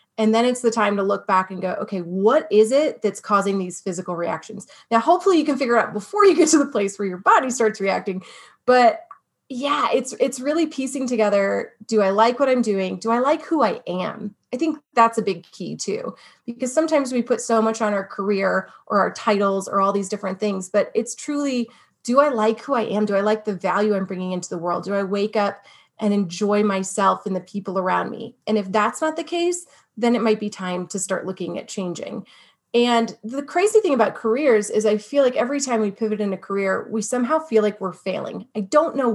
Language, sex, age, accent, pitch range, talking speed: English, female, 30-49, American, 200-245 Hz, 235 wpm